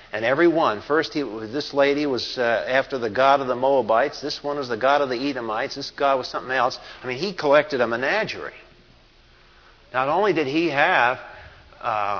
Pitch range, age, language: 130-160 Hz, 50-69, English